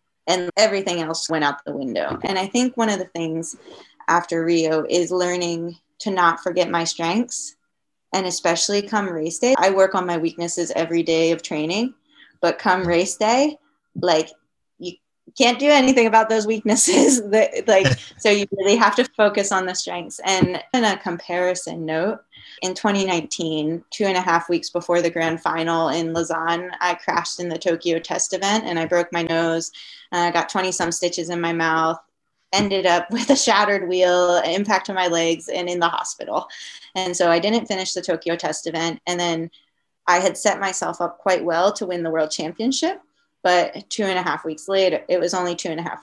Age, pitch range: 20-39, 170-205 Hz